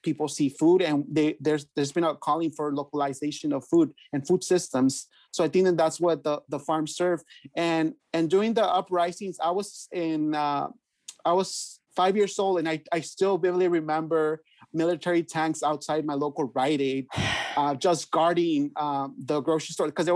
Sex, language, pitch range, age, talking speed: male, English, 150-175 Hz, 30-49, 190 wpm